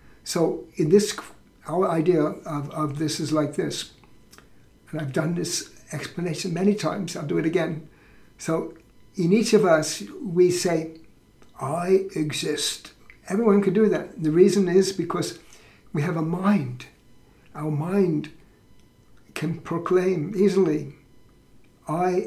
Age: 60-79